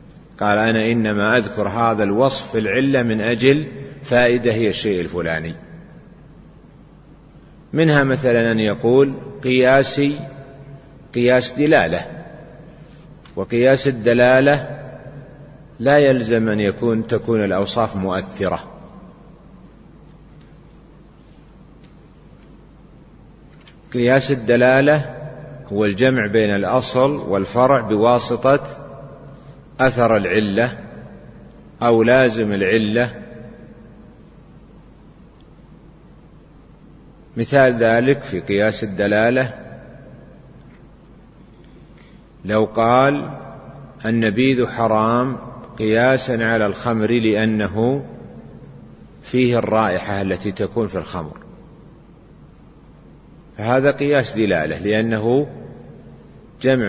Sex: male